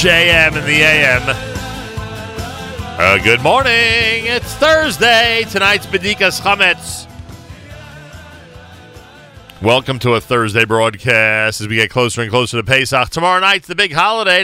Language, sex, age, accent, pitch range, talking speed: English, male, 40-59, American, 95-135 Hz, 125 wpm